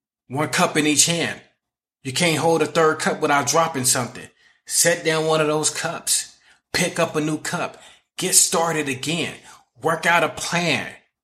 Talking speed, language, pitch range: 170 wpm, English, 140-170 Hz